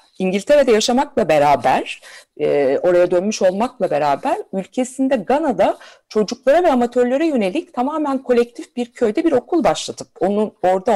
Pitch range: 195-280 Hz